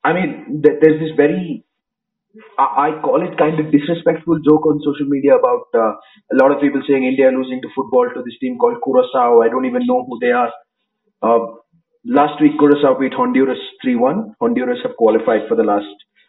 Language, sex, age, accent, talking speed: English, male, 30-49, Indian, 195 wpm